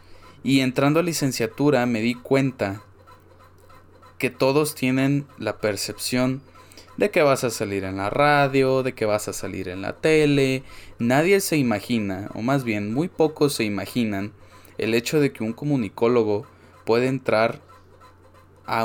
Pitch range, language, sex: 100-140 Hz, Spanish, male